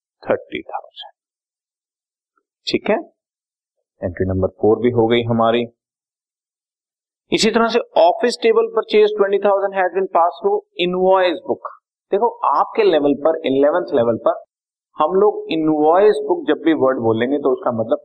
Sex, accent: male, native